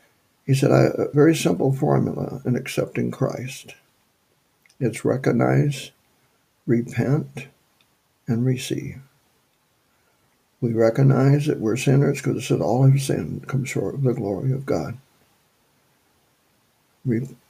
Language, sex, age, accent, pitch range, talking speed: English, male, 60-79, American, 120-135 Hz, 105 wpm